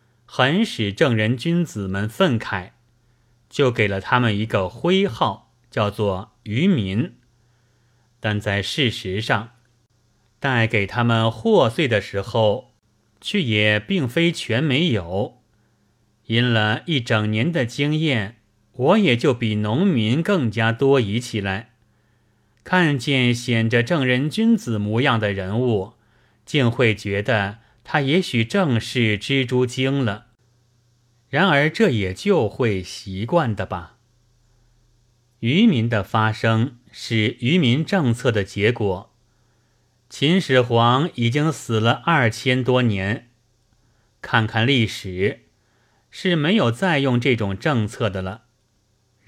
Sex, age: male, 30-49